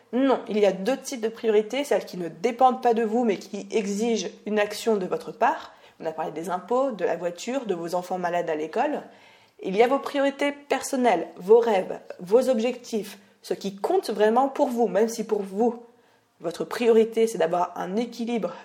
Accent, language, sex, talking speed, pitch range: French, French, female, 205 wpm, 200-270 Hz